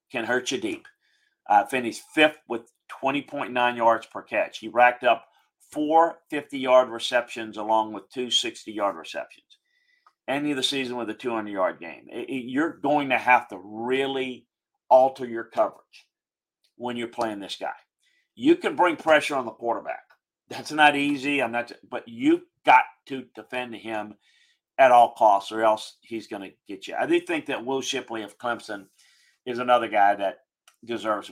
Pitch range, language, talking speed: 115-150 Hz, English, 170 wpm